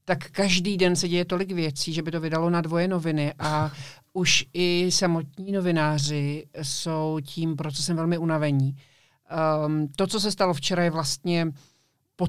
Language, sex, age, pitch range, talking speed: Czech, male, 50-69, 150-175 Hz, 155 wpm